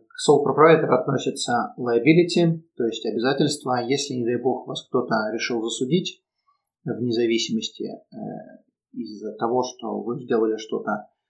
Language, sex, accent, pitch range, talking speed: Russian, male, native, 120-145 Hz, 125 wpm